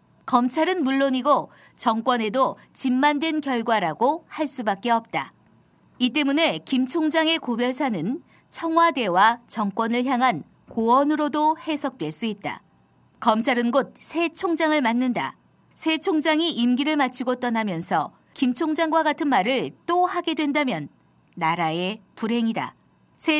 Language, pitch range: Korean, 225-300 Hz